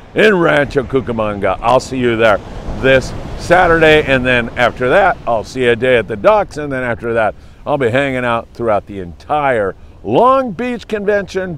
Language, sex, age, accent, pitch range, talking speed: English, male, 50-69, American, 105-155 Hz, 180 wpm